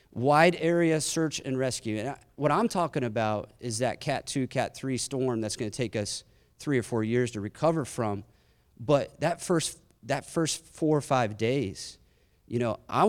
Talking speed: 195 wpm